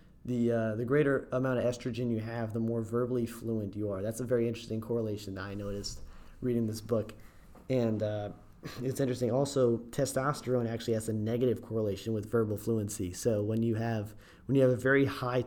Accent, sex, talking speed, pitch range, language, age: American, male, 195 wpm, 110-130 Hz, English, 30-49